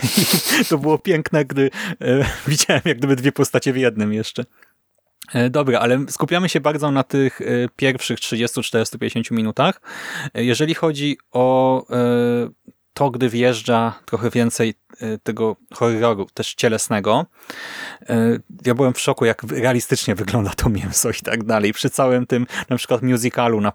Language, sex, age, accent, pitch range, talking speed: English, male, 30-49, Polish, 115-135 Hz, 135 wpm